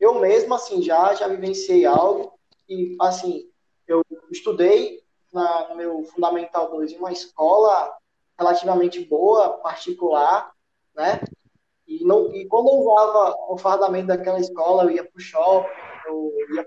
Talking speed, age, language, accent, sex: 135 wpm, 20-39, Portuguese, Brazilian, male